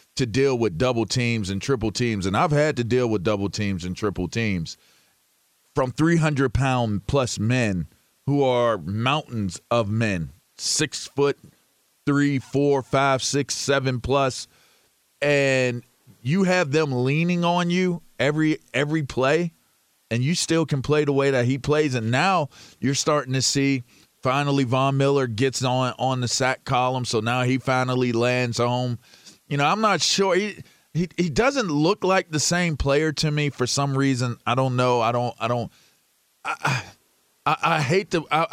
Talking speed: 175 wpm